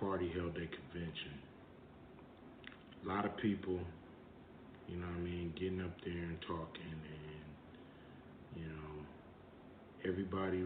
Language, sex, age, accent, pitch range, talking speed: English, male, 40-59, American, 85-110 Hz, 125 wpm